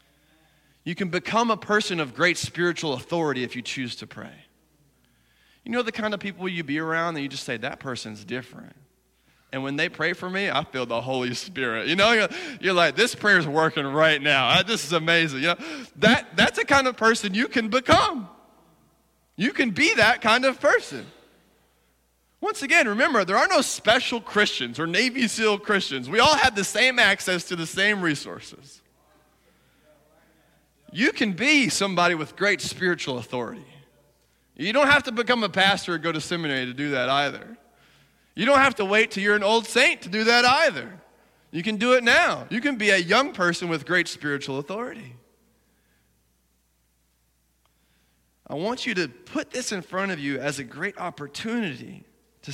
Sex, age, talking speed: male, 30-49, 180 wpm